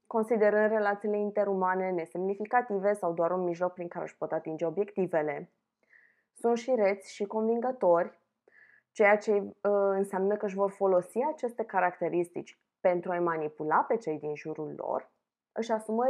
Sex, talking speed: female, 140 wpm